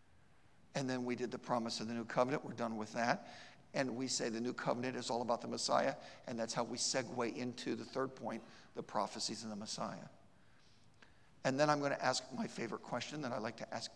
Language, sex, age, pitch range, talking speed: English, male, 50-69, 125-160 Hz, 225 wpm